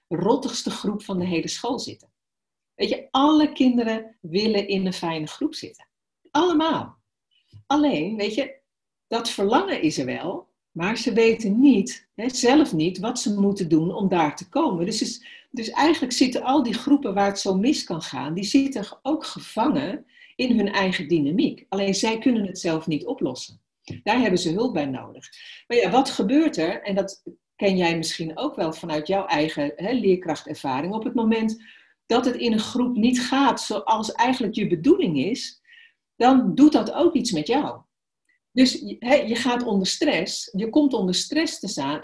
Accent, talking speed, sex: Dutch, 175 wpm, female